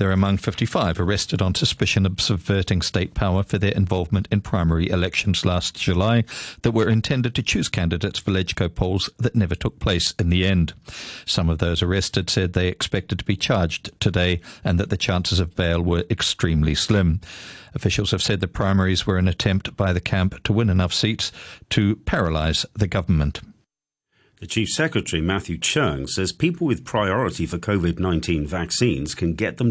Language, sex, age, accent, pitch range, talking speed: English, male, 50-69, British, 85-110 Hz, 180 wpm